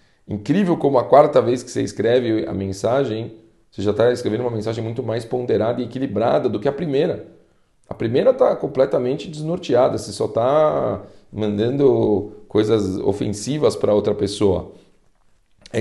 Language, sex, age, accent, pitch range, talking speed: Portuguese, male, 40-59, Brazilian, 100-135 Hz, 150 wpm